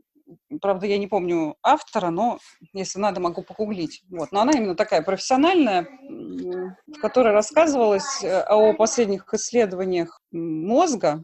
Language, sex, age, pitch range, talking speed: Russian, female, 30-49, 185-245 Hz, 125 wpm